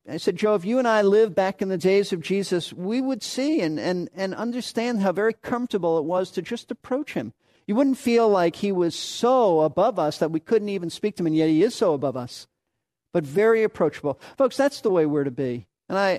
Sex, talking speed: male, 240 wpm